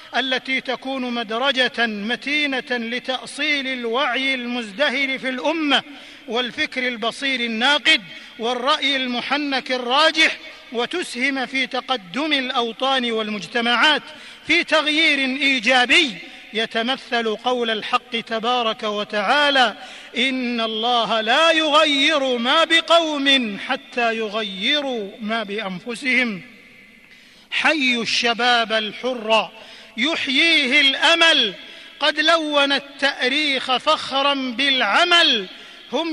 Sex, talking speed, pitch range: male, 80 wpm, 235-290 Hz